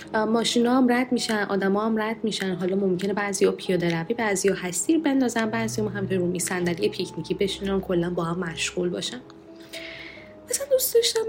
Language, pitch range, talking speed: Persian, 190-255 Hz, 170 wpm